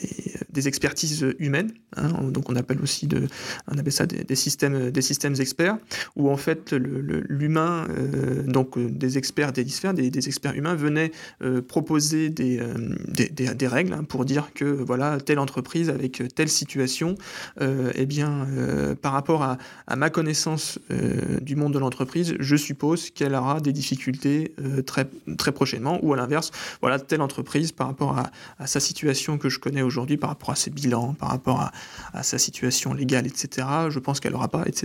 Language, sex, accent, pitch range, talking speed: French, male, French, 130-155 Hz, 195 wpm